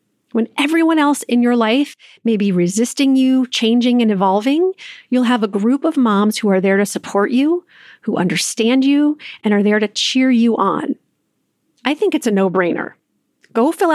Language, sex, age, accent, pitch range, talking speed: English, female, 40-59, American, 200-265 Hz, 180 wpm